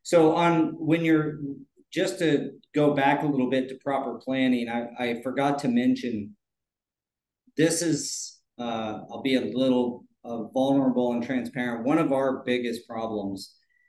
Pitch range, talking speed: 120-145 Hz, 150 wpm